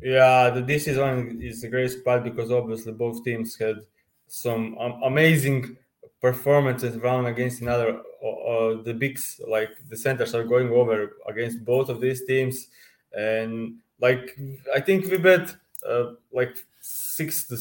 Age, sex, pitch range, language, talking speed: 20-39, male, 115-130 Hz, English, 155 wpm